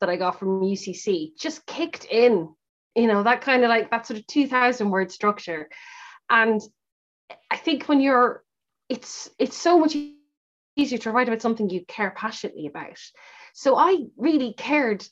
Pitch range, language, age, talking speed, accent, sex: 215-320 Hz, English, 20-39, 165 wpm, Irish, female